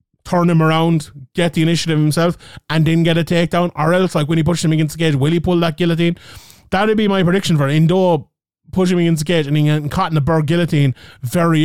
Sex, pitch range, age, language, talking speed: male, 145-175 Hz, 20-39, English, 240 wpm